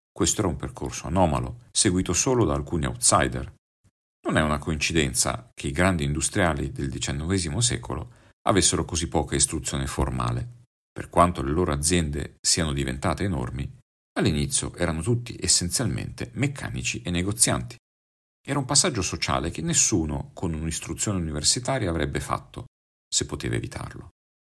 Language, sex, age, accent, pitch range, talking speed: Italian, male, 50-69, native, 70-100 Hz, 135 wpm